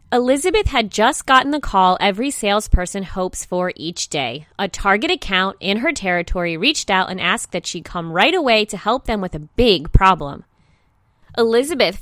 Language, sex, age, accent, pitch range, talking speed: English, female, 20-39, American, 180-255 Hz, 175 wpm